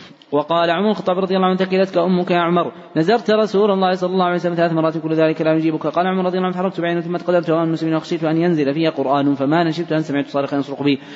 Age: 30-49